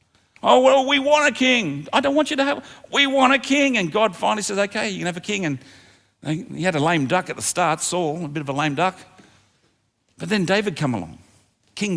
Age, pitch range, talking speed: 50-69, 145-205 Hz, 240 wpm